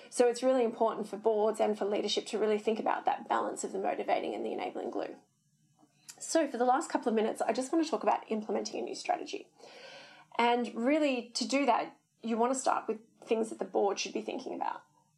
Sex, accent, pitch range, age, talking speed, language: female, Australian, 215-285 Hz, 20-39, 225 wpm, English